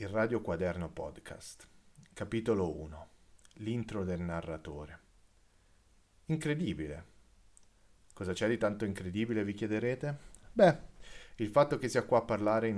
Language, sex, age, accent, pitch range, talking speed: Italian, male, 40-59, native, 90-115 Hz, 120 wpm